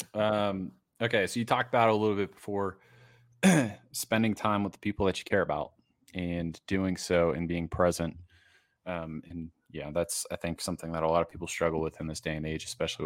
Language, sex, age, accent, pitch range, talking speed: English, male, 20-39, American, 85-105 Hz, 205 wpm